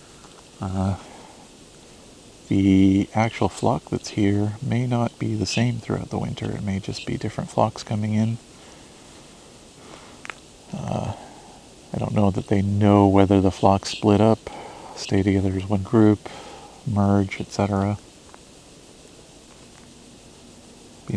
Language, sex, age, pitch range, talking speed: English, male, 40-59, 95-110 Hz, 120 wpm